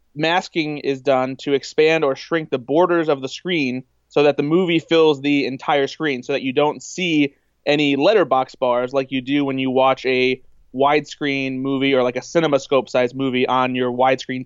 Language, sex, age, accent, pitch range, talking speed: English, male, 20-39, American, 135-165 Hz, 185 wpm